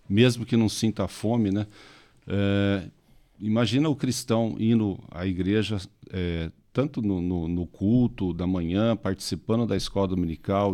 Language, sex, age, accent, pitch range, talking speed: Portuguese, male, 40-59, Brazilian, 95-120 Hz, 140 wpm